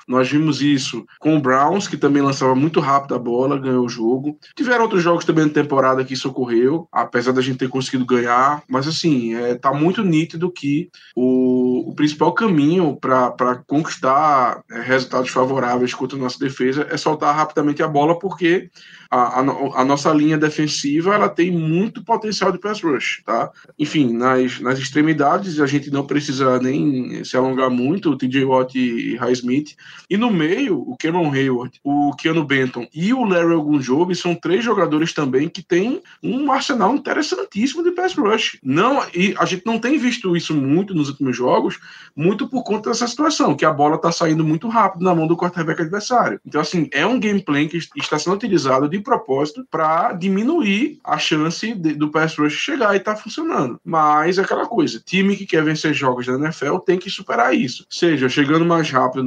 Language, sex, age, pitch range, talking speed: Portuguese, male, 10-29, 130-185 Hz, 185 wpm